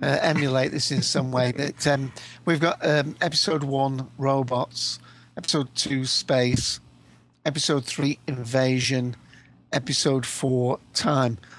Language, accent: English, British